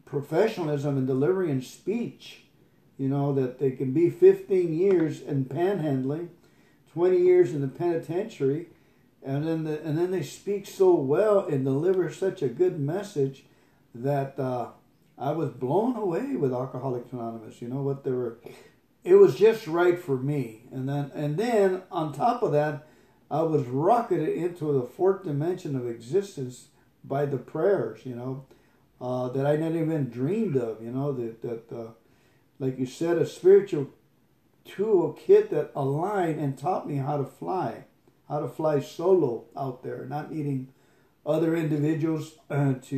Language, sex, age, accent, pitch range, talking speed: English, male, 50-69, American, 130-160 Hz, 160 wpm